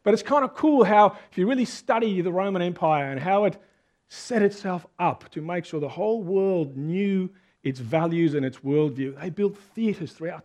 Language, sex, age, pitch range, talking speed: English, male, 40-59, 160-210 Hz, 200 wpm